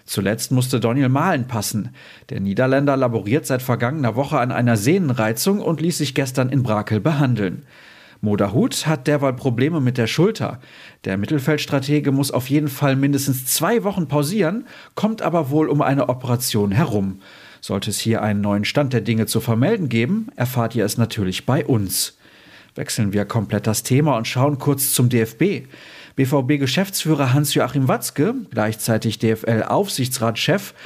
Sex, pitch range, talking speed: male, 115-150 Hz, 150 wpm